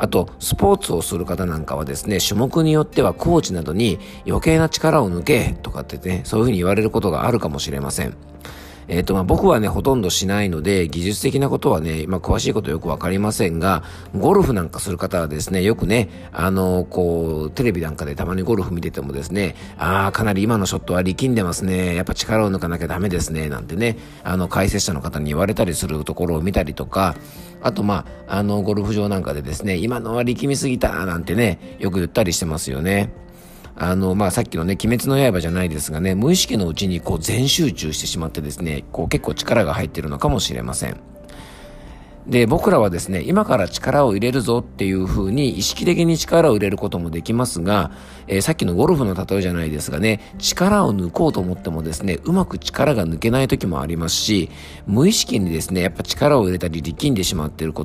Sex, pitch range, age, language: male, 85-110 Hz, 50-69, Japanese